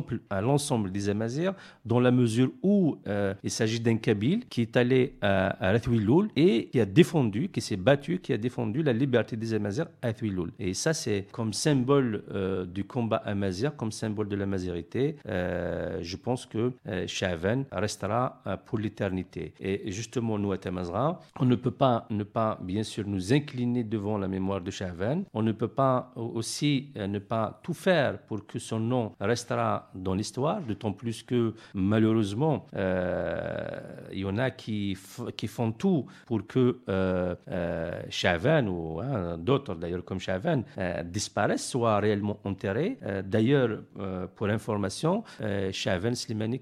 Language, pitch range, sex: French, 100-125 Hz, male